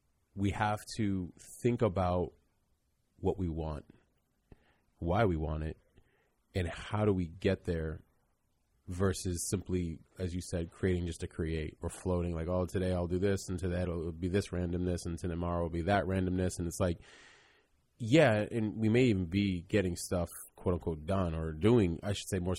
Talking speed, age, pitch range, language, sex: 180 wpm, 30-49, 80-95 Hz, English, male